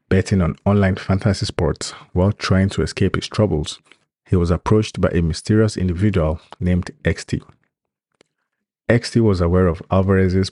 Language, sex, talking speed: English, male, 145 wpm